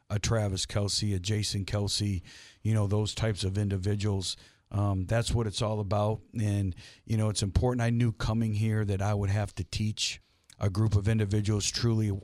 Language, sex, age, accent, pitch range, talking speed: English, male, 50-69, American, 100-110 Hz, 185 wpm